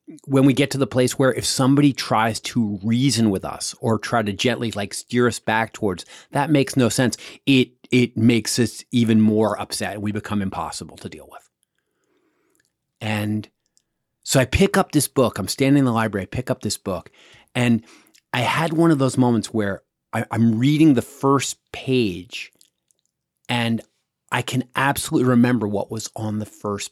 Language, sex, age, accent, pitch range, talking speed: English, male, 30-49, American, 105-130 Hz, 180 wpm